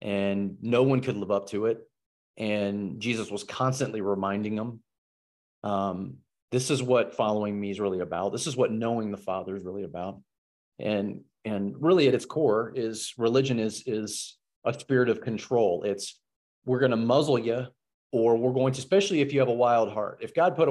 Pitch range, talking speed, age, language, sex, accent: 100-125 Hz, 190 wpm, 30-49, English, male, American